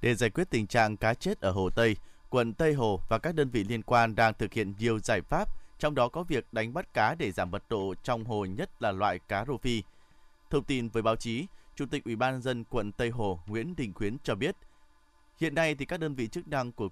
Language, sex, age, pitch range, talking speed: Vietnamese, male, 20-39, 115-145 Hz, 250 wpm